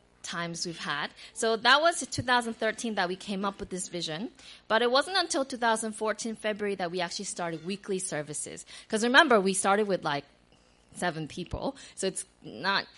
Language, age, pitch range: English, 20-39, 165-225 Hz